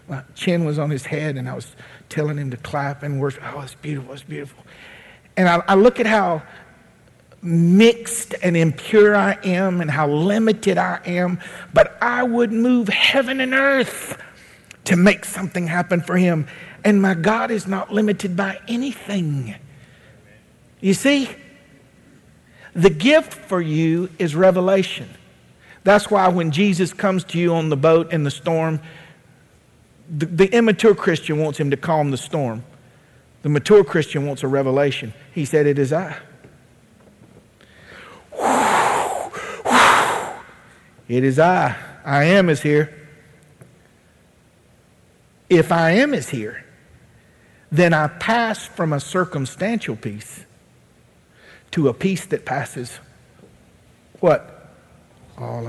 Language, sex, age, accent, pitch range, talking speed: English, male, 50-69, American, 140-195 Hz, 135 wpm